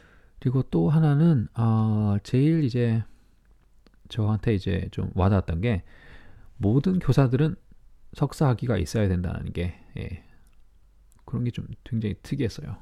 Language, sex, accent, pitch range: Korean, male, native, 95-120 Hz